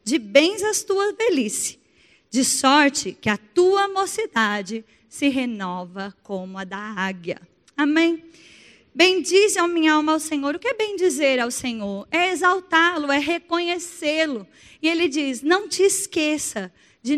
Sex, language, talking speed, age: female, Portuguese, 145 wpm, 20-39